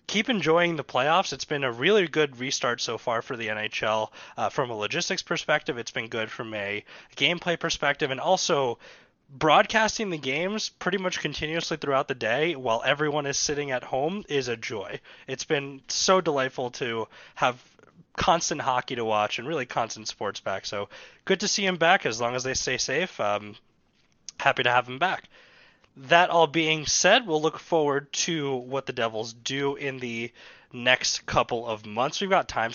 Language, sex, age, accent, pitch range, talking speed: English, male, 20-39, American, 125-170 Hz, 185 wpm